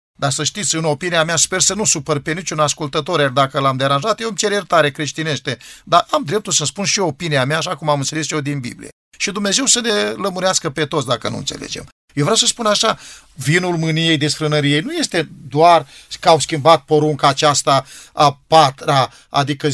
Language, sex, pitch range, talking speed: Romanian, male, 150-225 Hz, 205 wpm